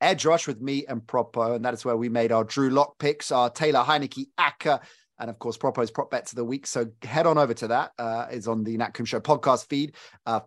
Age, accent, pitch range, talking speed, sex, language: 30-49, British, 115-150 Hz, 260 wpm, male, English